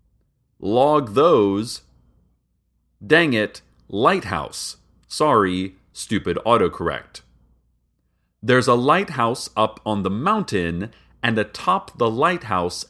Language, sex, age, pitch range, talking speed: English, male, 40-59, 95-140 Hz, 90 wpm